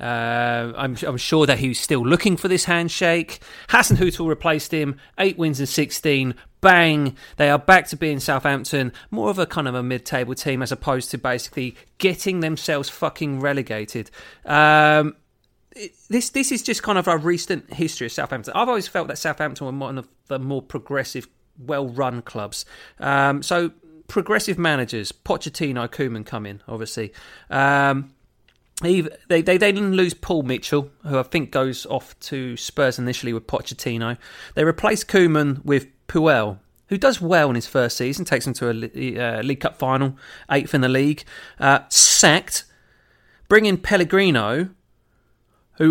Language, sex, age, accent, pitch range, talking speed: English, male, 30-49, British, 125-170 Hz, 160 wpm